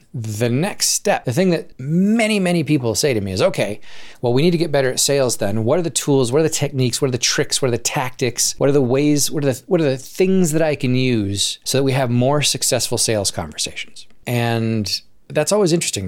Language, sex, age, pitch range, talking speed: English, male, 30-49, 105-135 Hz, 240 wpm